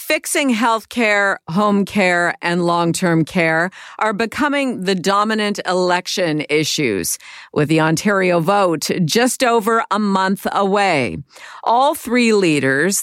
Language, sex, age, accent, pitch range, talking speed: English, female, 50-69, American, 170-210 Hz, 125 wpm